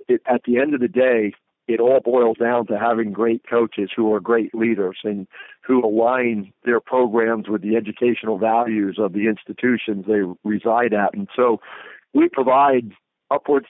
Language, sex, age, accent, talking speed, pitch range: English, male, 50-69, American, 165 wpm, 110-130 Hz